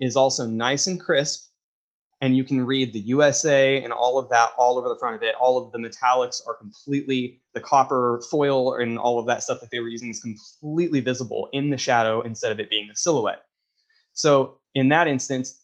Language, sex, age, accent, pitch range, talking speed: English, male, 20-39, American, 120-140 Hz, 210 wpm